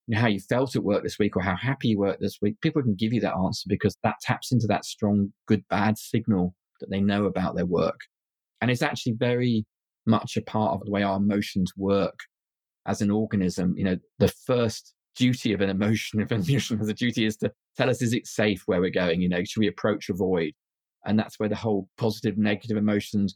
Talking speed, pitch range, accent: 220 wpm, 100-115 Hz, British